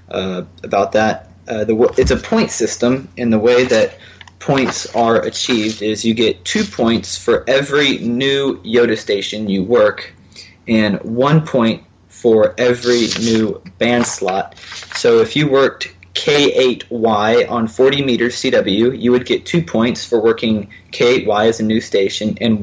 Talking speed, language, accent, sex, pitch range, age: 150 wpm, English, American, male, 105-125 Hz, 20-39